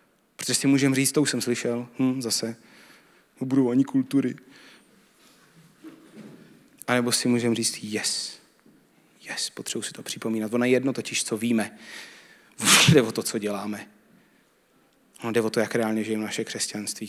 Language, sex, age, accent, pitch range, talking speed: Czech, male, 30-49, native, 110-130 Hz, 150 wpm